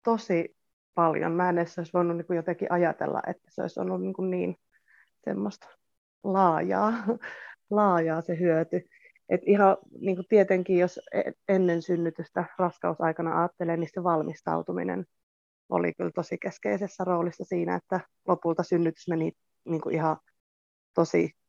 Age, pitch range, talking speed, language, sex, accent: 20-39, 155-185 Hz, 130 wpm, Finnish, female, native